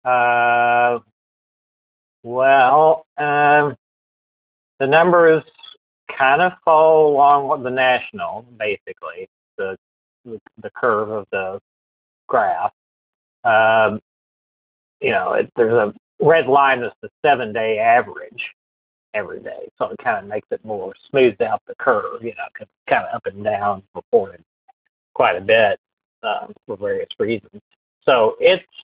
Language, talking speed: English, 135 wpm